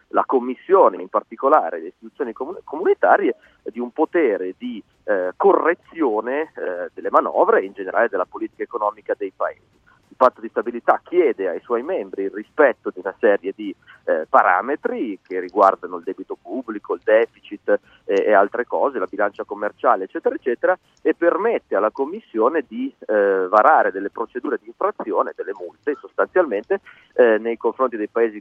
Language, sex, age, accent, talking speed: Italian, male, 30-49, native, 160 wpm